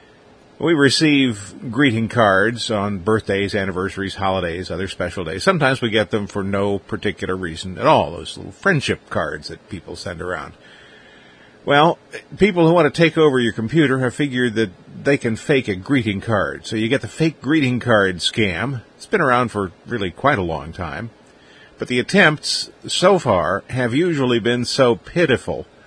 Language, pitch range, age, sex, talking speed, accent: English, 100-140 Hz, 50-69, male, 170 wpm, American